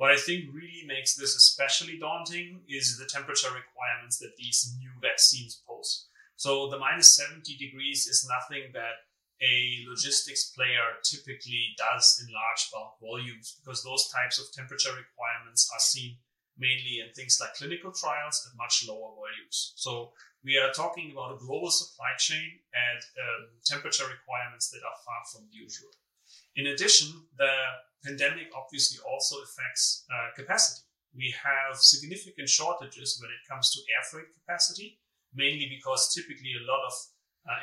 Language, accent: English, German